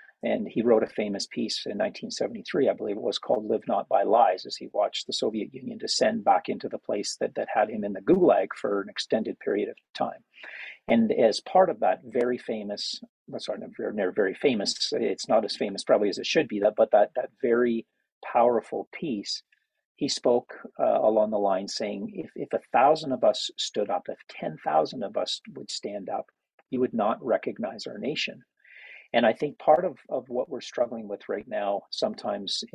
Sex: male